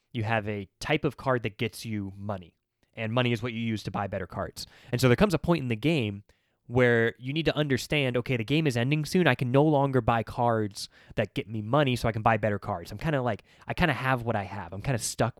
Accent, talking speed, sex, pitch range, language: American, 275 wpm, male, 105-125 Hz, English